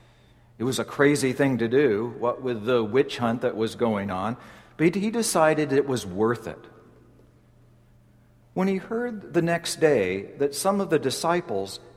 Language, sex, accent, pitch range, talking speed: English, male, American, 120-160 Hz, 170 wpm